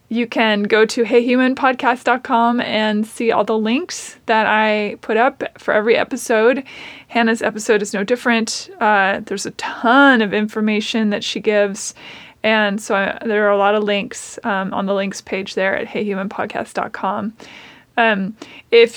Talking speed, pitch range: 150 wpm, 210-255 Hz